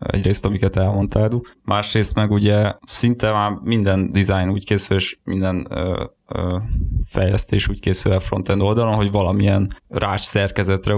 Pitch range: 95-110 Hz